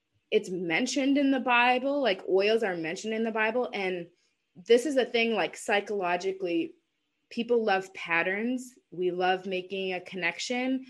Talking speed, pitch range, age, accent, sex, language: 150 wpm, 190-260 Hz, 20-39, American, female, English